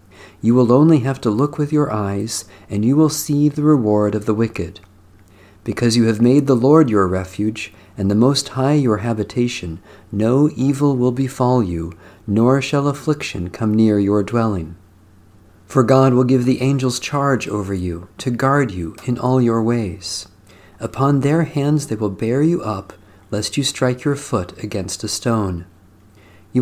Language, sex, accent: English, male, American